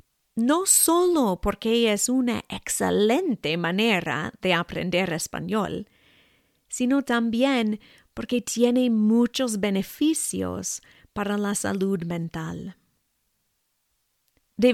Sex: female